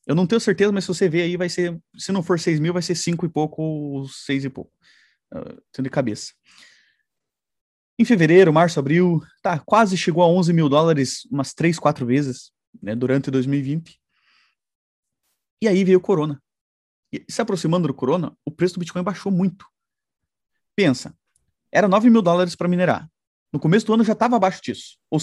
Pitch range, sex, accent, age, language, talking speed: 140-195 Hz, male, Brazilian, 30-49, Portuguese, 190 wpm